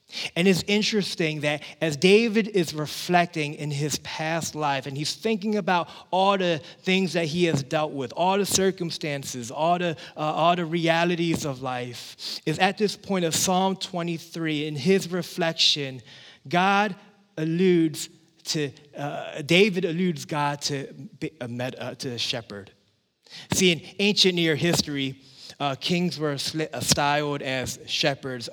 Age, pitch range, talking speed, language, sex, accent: 20-39, 135-180 Hz, 140 wpm, English, male, American